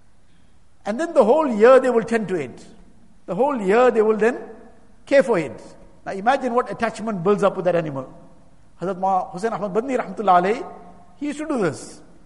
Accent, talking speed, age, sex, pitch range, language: Indian, 175 wpm, 60-79, male, 170-245 Hz, English